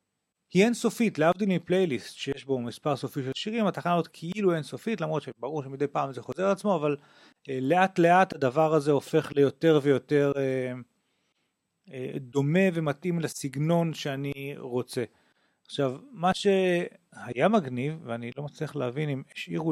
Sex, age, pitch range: male, 40-59, 140-185 Hz